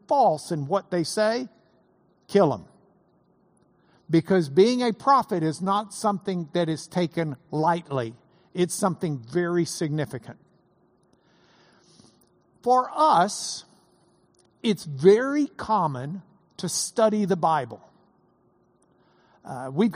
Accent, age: American, 60-79